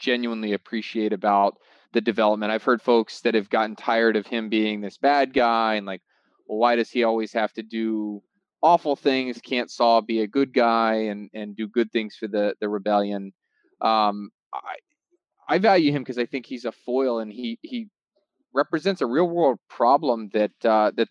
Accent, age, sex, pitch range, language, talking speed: American, 20-39, male, 105-130 Hz, English, 190 wpm